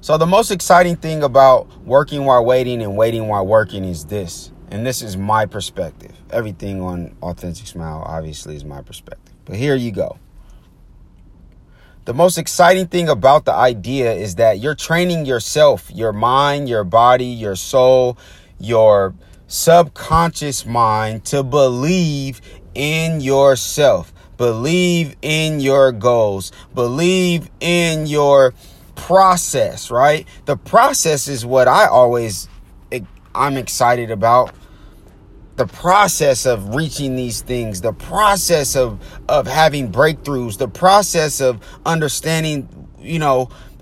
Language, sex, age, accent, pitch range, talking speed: English, male, 30-49, American, 110-155 Hz, 125 wpm